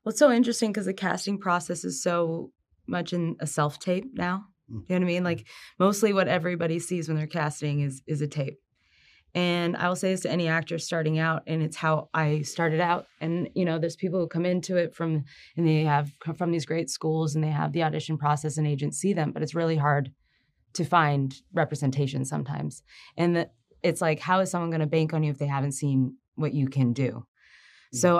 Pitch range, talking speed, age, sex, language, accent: 150-180 Hz, 225 wpm, 20-39, female, English, American